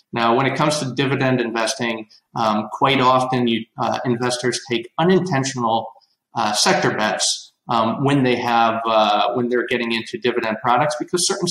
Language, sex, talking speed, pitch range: English, male, 145 wpm, 120-150 Hz